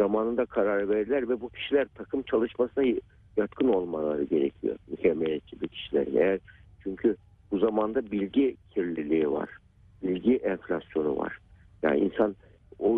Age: 60-79